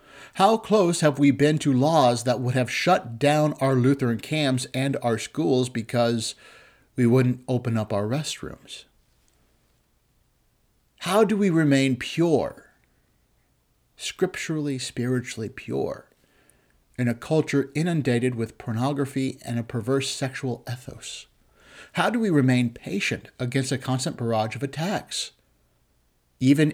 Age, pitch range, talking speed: 50-69, 120-150 Hz, 125 wpm